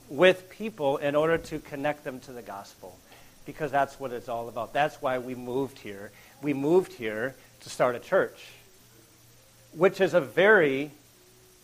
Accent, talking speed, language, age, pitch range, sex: American, 165 wpm, English, 50-69, 125-160 Hz, male